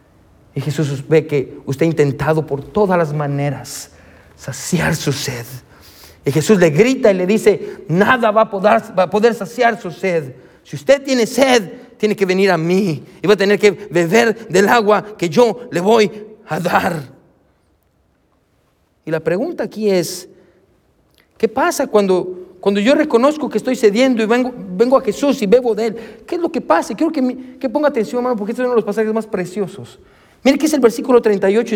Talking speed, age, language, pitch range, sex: 190 wpm, 40-59, Spanish, 170-235 Hz, male